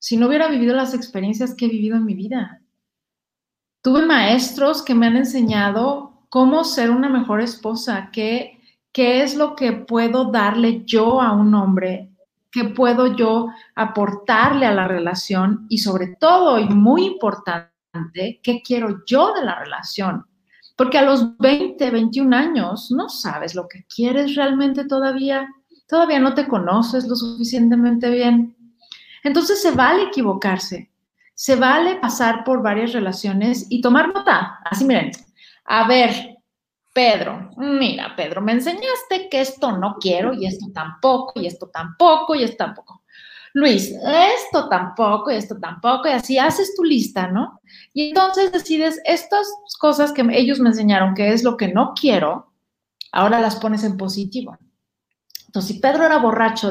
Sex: female